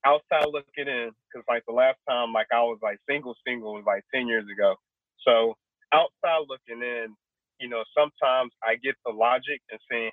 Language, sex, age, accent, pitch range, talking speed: English, male, 30-49, American, 120-145 Hz, 190 wpm